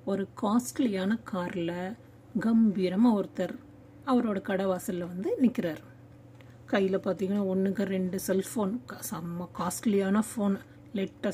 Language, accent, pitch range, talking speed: Tamil, native, 195-240 Hz, 75 wpm